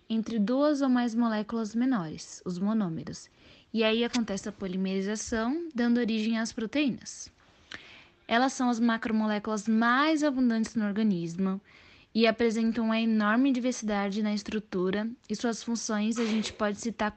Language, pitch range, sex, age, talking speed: Portuguese, 190-230 Hz, female, 10-29, 135 wpm